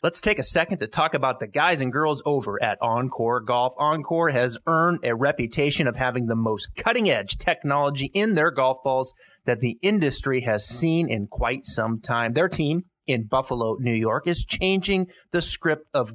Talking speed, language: 185 wpm, English